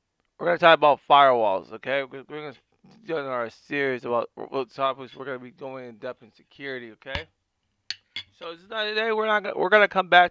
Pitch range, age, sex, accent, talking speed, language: 130-160 Hz, 20-39, male, American, 205 wpm, English